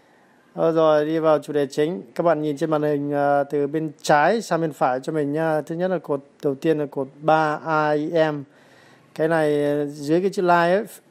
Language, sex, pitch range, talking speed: Vietnamese, male, 145-170 Hz, 210 wpm